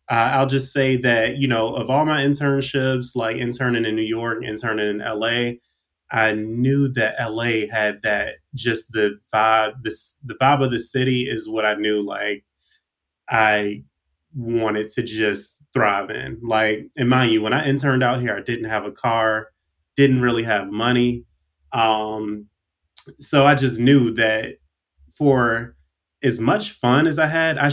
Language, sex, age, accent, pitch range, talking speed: English, male, 20-39, American, 105-125 Hz, 165 wpm